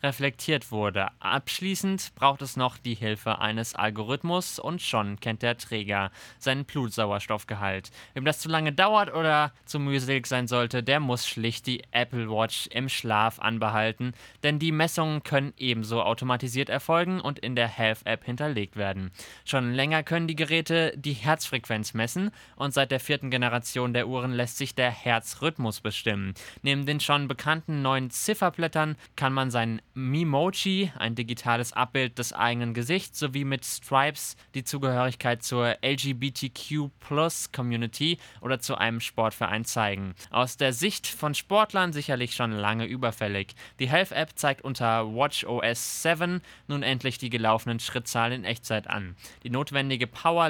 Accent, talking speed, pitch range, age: German, 150 wpm, 115-145 Hz, 20-39